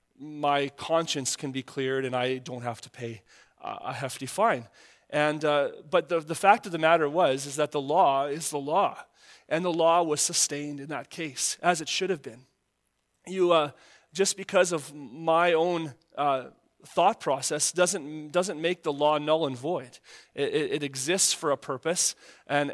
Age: 30-49